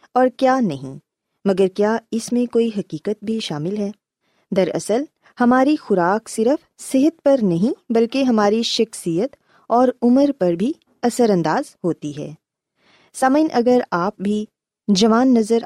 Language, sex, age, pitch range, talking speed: Urdu, female, 20-39, 175-255 Hz, 140 wpm